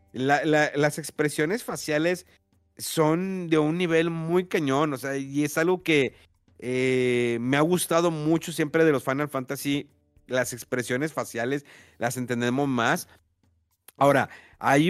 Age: 50-69